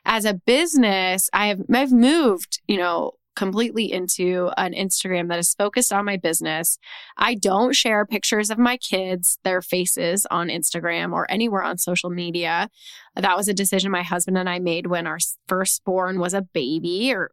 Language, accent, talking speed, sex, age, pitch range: English, American, 175 wpm, female, 10-29, 180-230 Hz